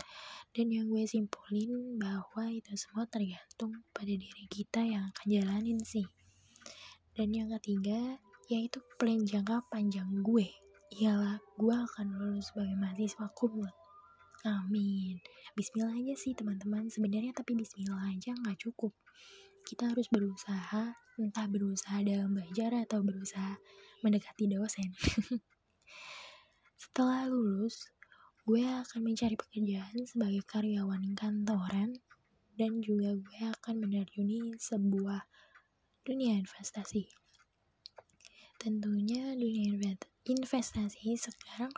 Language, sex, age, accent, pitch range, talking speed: Indonesian, female, 20-39, native, 200-230 Hz, 105 wpm